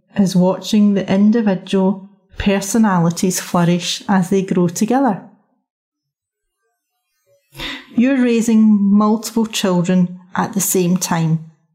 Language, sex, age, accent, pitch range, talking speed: English, female, 30-49, British, 180-215 Hz, 90 wpm